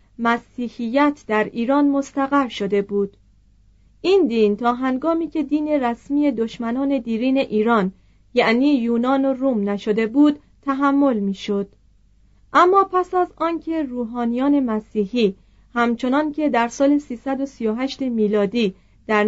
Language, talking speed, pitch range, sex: Persian, 115 wpm, 215-280 Hz, female